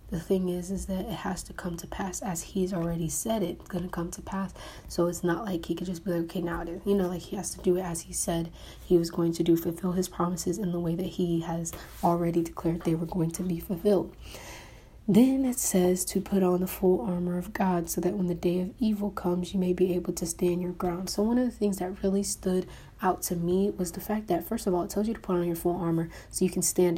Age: 20-39